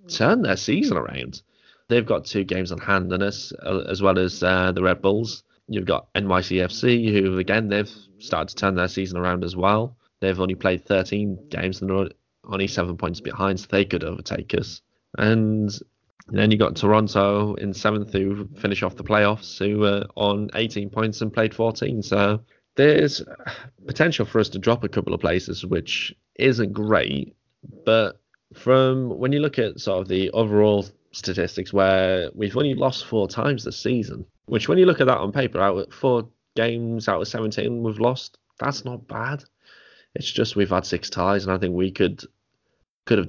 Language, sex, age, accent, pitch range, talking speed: English, male, 20-39, British, 95-110 Hz, 185 wpm